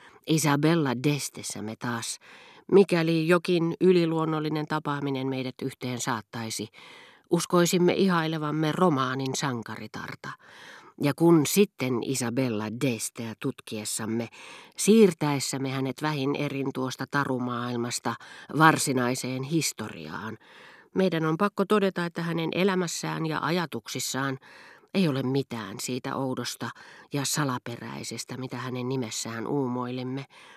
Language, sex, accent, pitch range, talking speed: Finnish, female, native, 125-155 Hz, 95 wpm